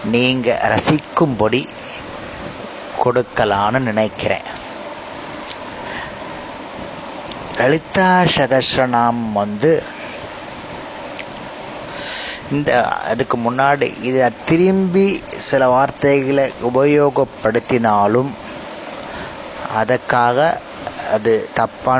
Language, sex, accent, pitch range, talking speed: Tamil, male, native, 120-175 Hz, 50 wpm